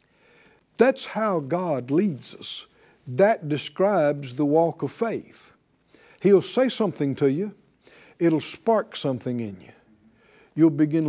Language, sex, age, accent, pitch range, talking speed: English, male, 60-79, American, 140-195 Hz, 125 wpm